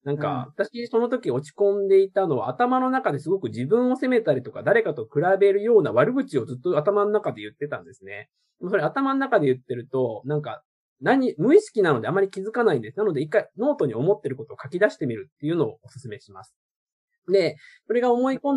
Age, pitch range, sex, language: 20-39, 140-220 Hz, male, Japanese